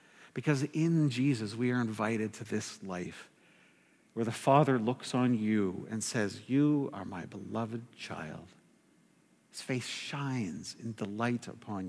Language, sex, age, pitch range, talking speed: English, male, 50-69, 115-145 Hz, 140 wpm